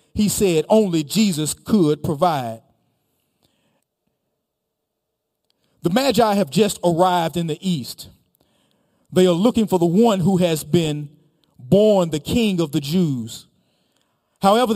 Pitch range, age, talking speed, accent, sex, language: 165-220 Hz, 40-59, 120 wpm, American, male, English